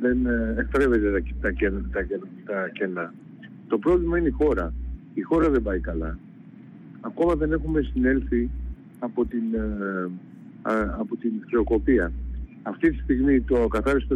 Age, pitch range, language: 50-69, 115-145 Hz, Greek